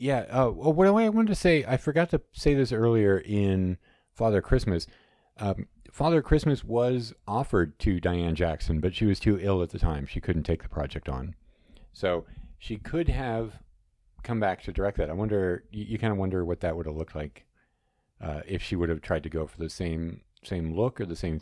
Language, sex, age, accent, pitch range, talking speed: English, male, 40-59, American, 90-120 Hz, 215 wpm